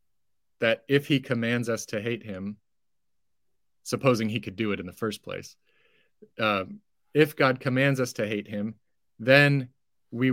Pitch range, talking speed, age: 110-135 Hz, 155 wpm, 30-49